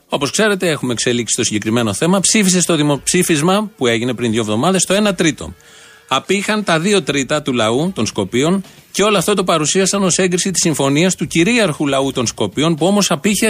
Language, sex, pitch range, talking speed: Greek, male, 125-170 Hz, 190 wpm